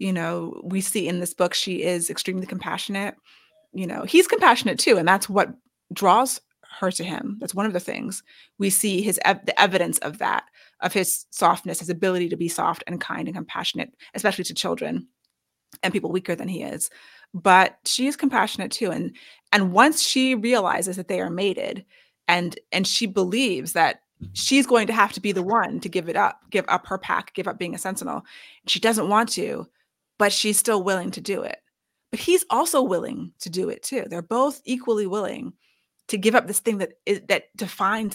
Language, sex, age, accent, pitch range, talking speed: English, female, 30-49, American, 185-245 Hz, 200 wpm